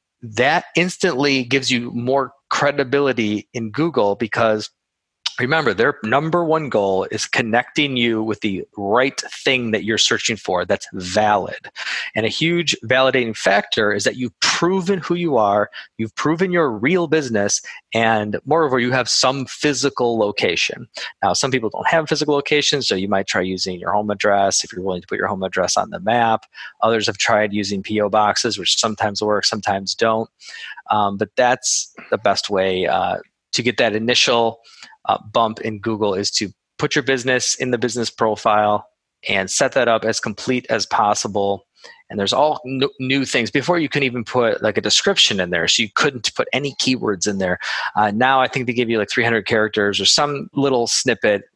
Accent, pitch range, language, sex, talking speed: American, 105-140 Hz, English, male, 185 wpm